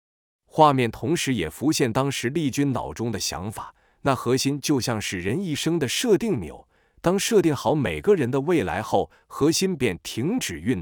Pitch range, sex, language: 105-140 Hz, male, Chinese